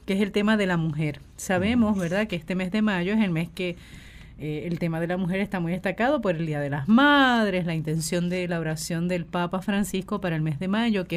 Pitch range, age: 165-195 Hz, 30-49